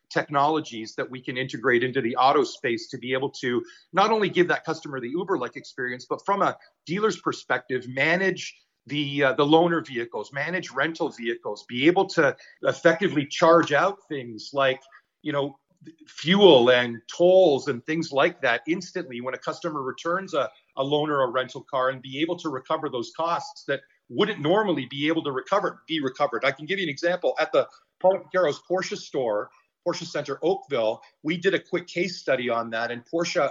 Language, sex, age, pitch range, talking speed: English, male, 40-59, 135-180 Hz, 185 wpm